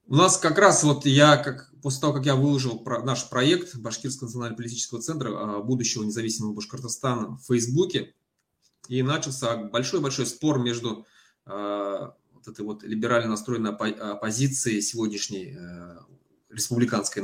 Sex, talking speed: male, 130 wpm